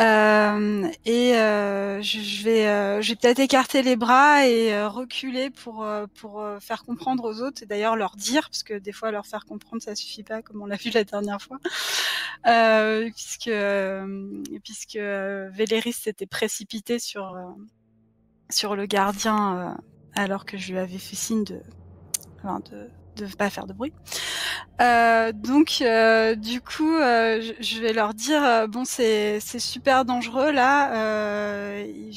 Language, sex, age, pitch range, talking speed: French, female, 20-39, 205-240 Hz, 160 wpm